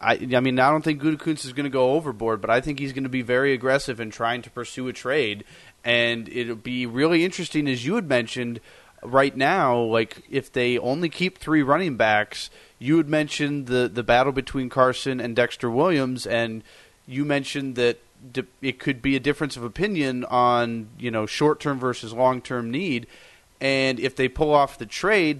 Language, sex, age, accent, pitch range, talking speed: English, male, 30-49, American, 120-145 Hz, 195 wpm